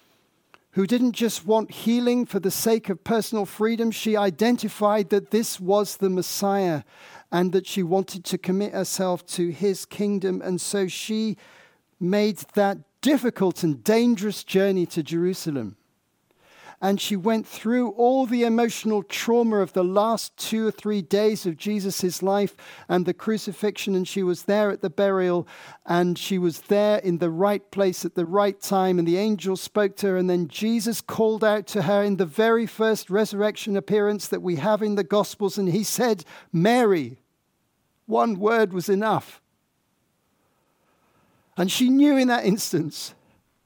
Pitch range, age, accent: 180-225 Hz, 50-69, British